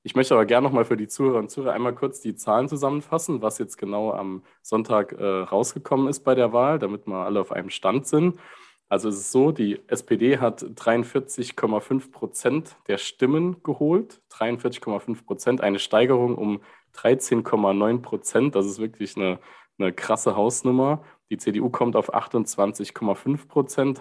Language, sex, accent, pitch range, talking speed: German, male, German, 105-130 Hz, 165 wpm